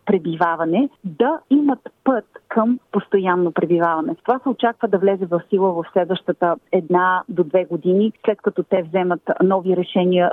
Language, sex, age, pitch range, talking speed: Bulgarian, female, 40-59, 180-215 Hz, 150 wpm